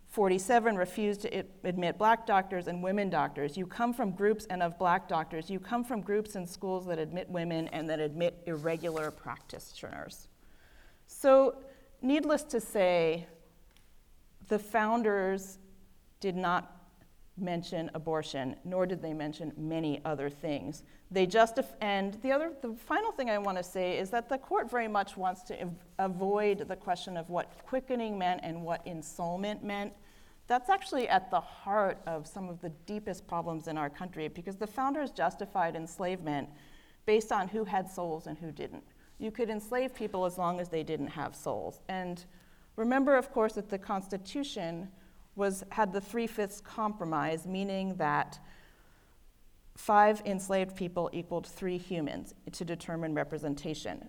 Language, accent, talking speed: English, American, 155 wpm